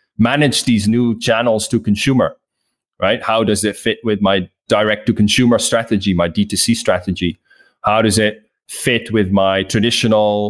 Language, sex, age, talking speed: English, male, 20-39, 145 wpm